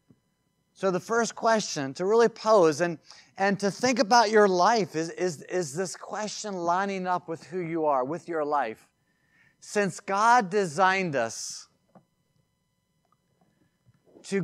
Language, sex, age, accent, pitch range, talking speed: English, male, 30-49, American, 155-200 Hz, 135 wpm